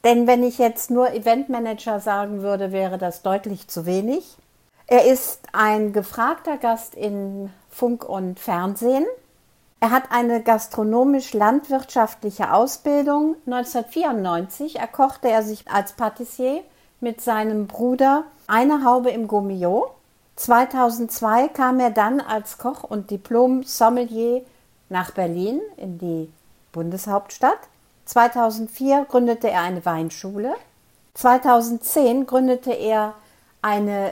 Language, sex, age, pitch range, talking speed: German, female, 50-69, 215-255 Hz, 110 wpm